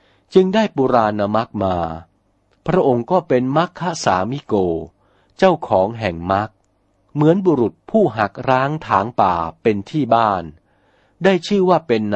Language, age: Thai, 60-79